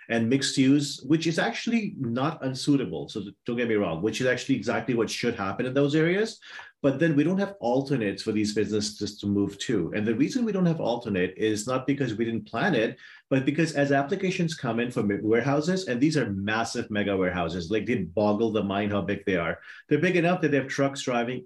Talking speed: 225 wpm